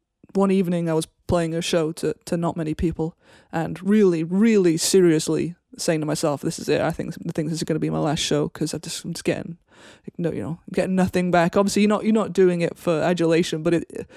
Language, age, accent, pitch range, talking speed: English, 20-39, British, 165-190 Hz, 235 wpm